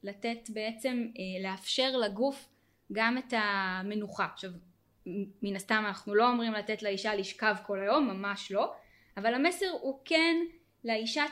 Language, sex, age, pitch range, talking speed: Hebrew, female, 10-29, 205-265 Hz, 135 wpm